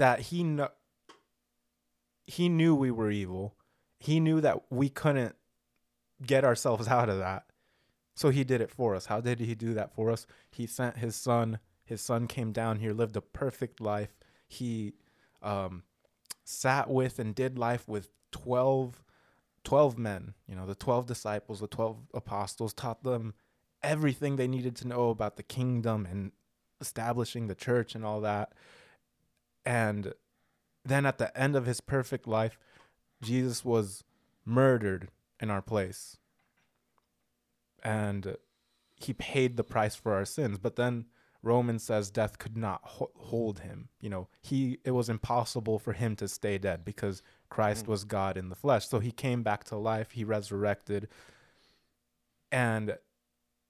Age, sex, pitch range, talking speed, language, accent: 20-39, male, 100-125 Hz, 155 wpm, English, American